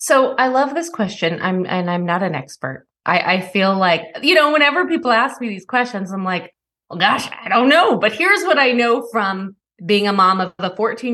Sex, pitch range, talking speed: female, 170-220 Hz, 225 wpm